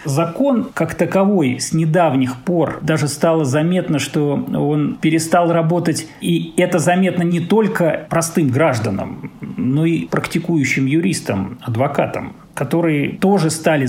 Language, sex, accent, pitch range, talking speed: Russian, male, native, 130-175 Hz, 120 wpm